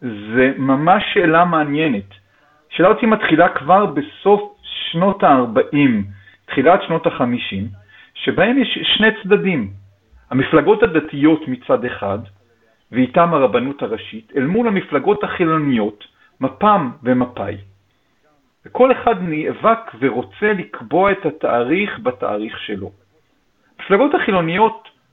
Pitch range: 130-200 Hz